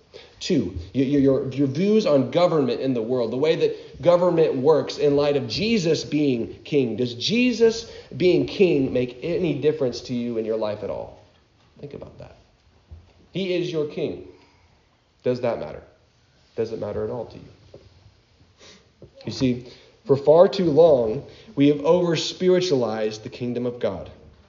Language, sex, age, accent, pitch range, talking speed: English, male, 40-59, American, 125-180 Hz, 160 wpm